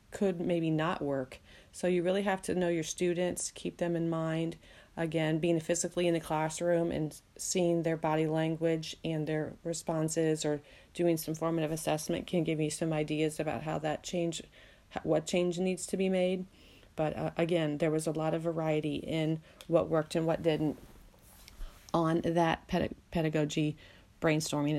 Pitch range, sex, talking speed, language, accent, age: 160-195 Hz, female, 165 wpm, English, American, 30-49